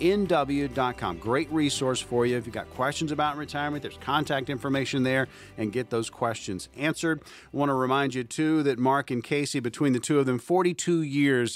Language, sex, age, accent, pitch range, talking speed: English, male, 40-59, American, 125-155 Hz, 190 wpm